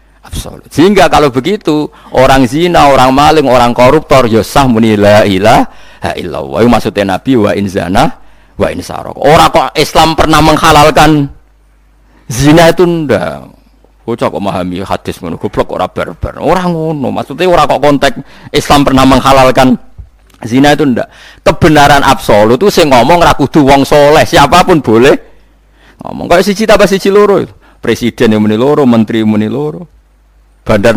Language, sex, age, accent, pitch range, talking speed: Indonesian, male, 50-69, native, 100-150 Hz, 145 wpm